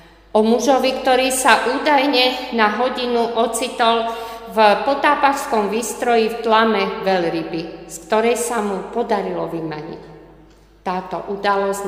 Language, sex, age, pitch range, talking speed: Slovak, female, 50-69, 180-230 Hz, 110 wpm